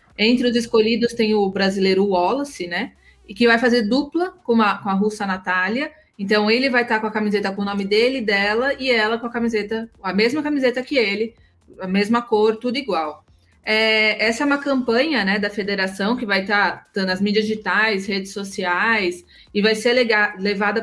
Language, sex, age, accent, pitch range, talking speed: Portuguese, female, 20-39, Brazilian, 195-240 Hz, 200 wpm